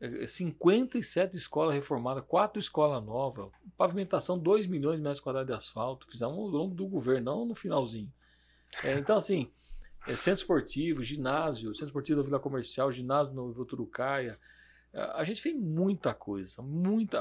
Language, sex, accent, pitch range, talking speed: Portuguese, male, Brazilian, 120-175 Hz, 155 wpm